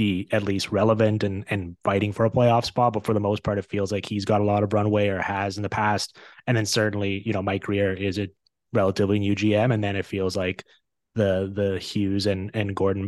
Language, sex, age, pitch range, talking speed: English, male, 20-39, 100-115 Hz, 240 wpm